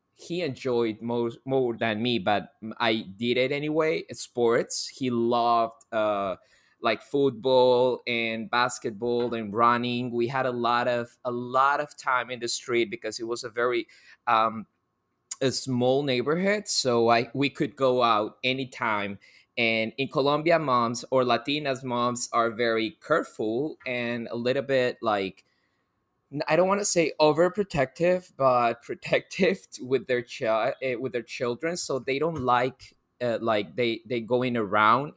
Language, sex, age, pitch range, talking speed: English, male, 20-39, 115-135 Hz, 150 wpm